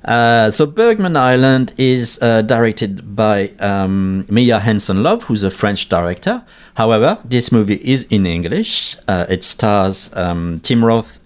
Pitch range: 90-115 Hz